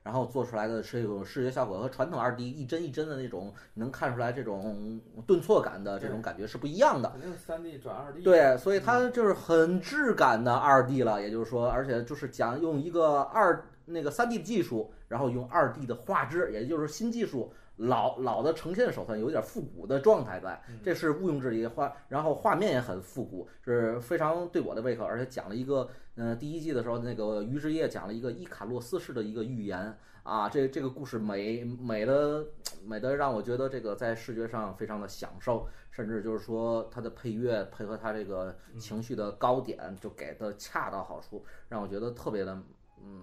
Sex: male